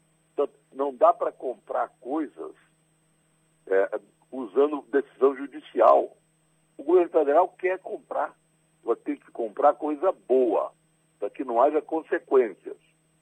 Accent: Brazilian